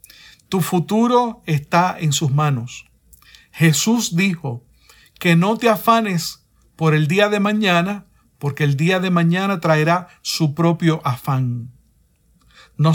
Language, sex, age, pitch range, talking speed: Spanish, male, 50-69, 155-200 Hz, 125 wpm